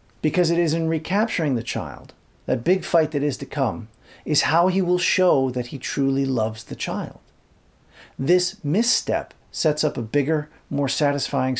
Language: English